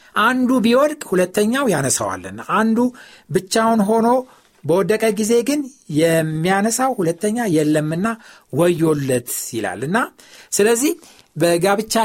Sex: male